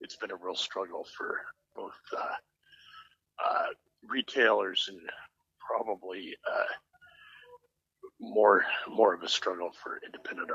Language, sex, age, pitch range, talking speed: English, male, 60-79, 330-450 Hz, 115 wpm